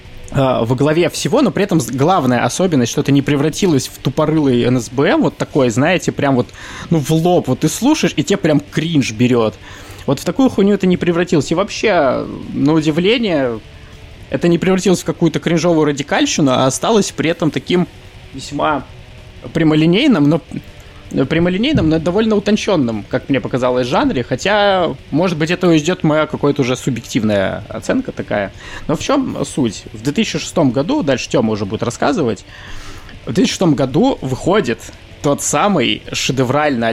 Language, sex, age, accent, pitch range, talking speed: Russian, male, 20-39, native, 115-160 Hz, 155 wpm